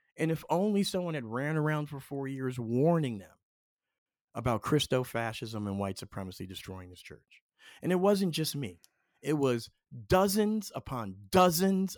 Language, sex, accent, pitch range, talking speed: English, male, American, 125-195 Hz, 150 wpm